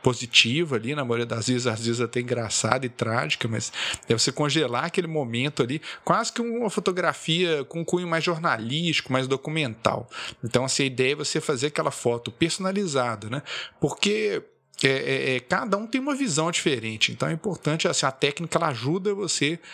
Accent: Brazilian